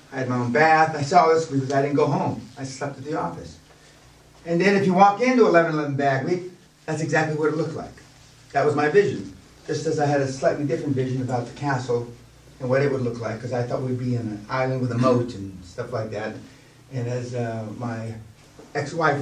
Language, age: English, 40-59